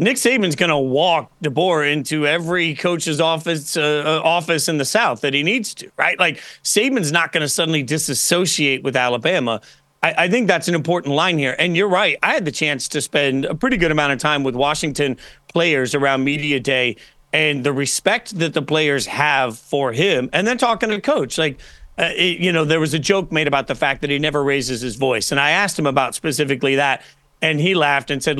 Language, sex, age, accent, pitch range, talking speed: English, male, 40-59, American, 140-175 Hz, 220 wpm